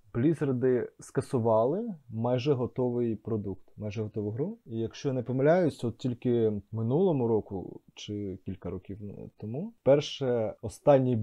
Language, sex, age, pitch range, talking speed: Ukrainian, male, 20-39, 110-135 Hz, 125 wpm